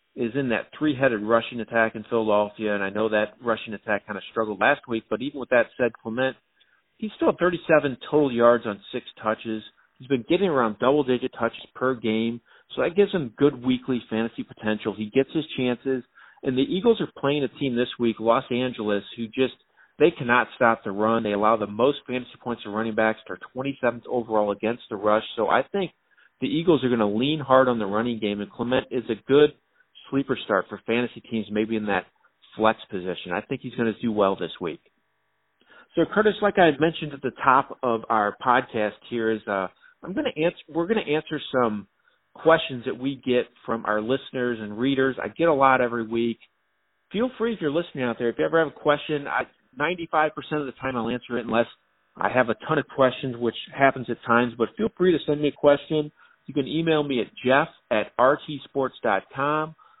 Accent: American